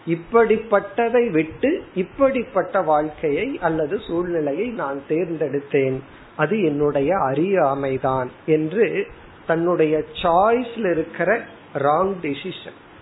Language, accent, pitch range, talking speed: Tamil, native, 150-205 Hz, 55 wpm